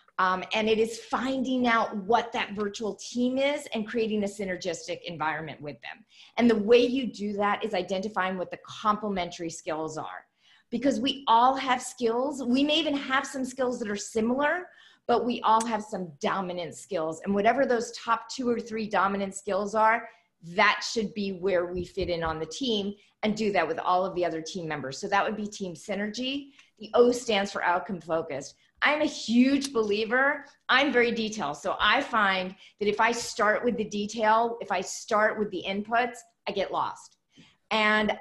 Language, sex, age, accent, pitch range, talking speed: English, female, 30-49, American, 185-240 Hz, 190 wpm